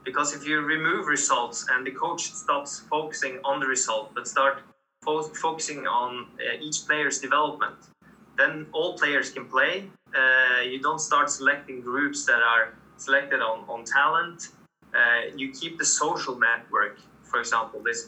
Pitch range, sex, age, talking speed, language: 125-160 Hz, male, 20-39, 155 wpm, English